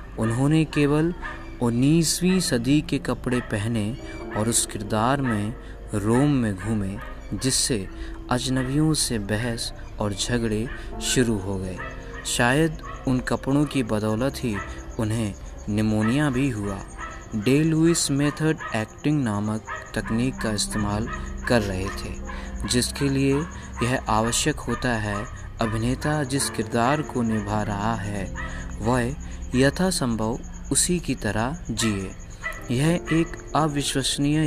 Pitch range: 105-140 Hz